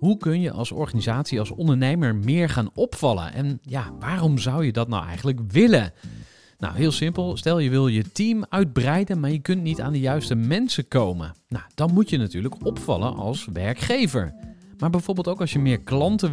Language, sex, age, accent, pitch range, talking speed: Dutch, male, 40-59, Dutch, 120-160 Hz, 190 wpm